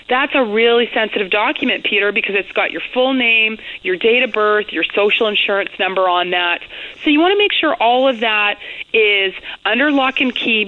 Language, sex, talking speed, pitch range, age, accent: English, female, 200 wpm, 205-285 Hz, 30-49, American